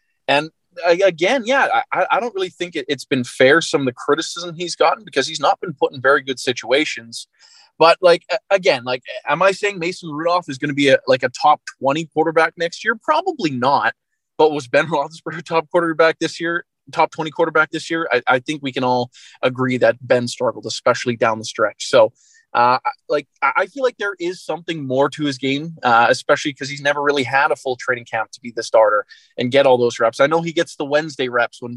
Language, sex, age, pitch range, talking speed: English, male, 20-39, 130-175 Hz, 225 wpm